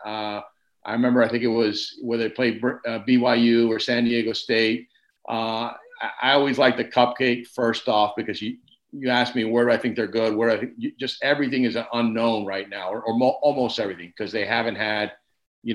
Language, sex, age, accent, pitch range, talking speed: English, male, 50-69, American, 110-125 Hz, 215 wpm